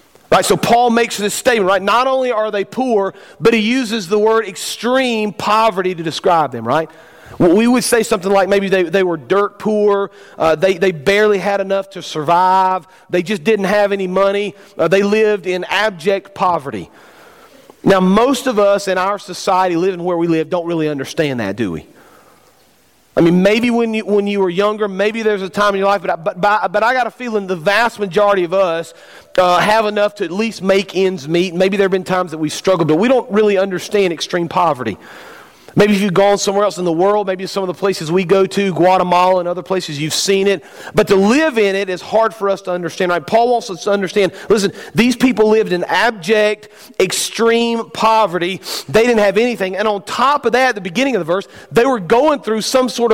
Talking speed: 220 wpm